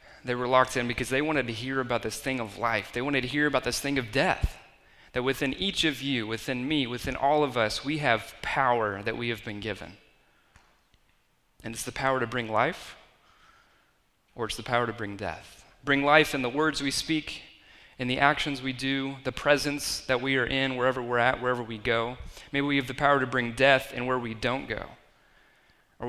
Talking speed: 215 wpm